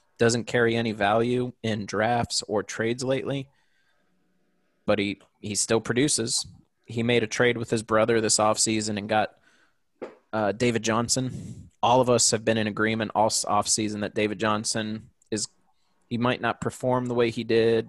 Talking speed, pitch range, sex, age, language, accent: 165 wpm, 105-115 Hz, male, 20-39, English, American